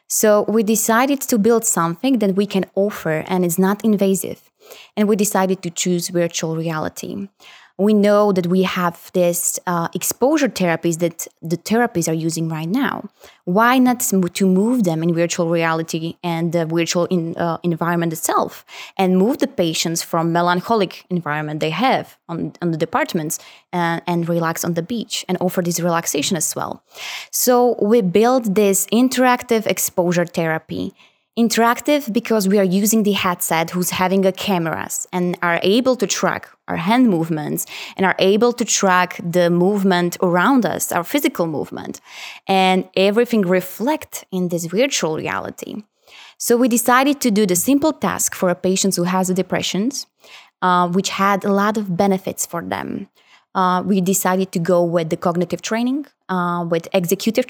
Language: Slovak